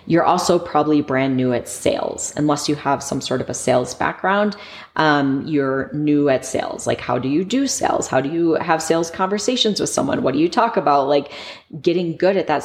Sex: female